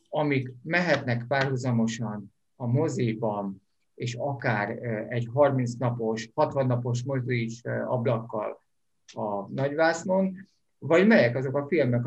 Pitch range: 120-155 Hz